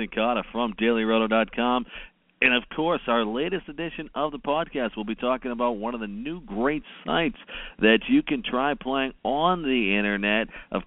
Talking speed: 170 wpm